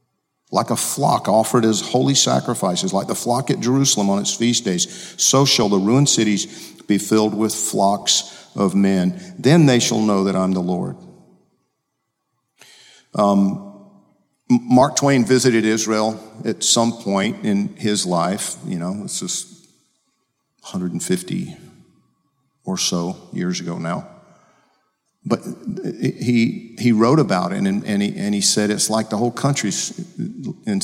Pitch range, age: 100-145 Hz, 50-69